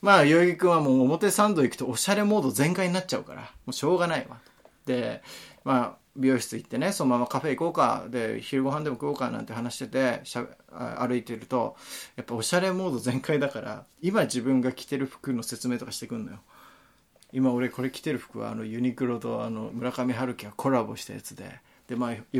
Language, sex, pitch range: Japanese, male, 125-185 Hz